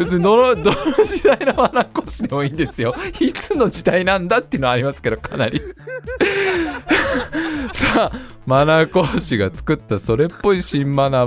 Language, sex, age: Japanese, male, 20-39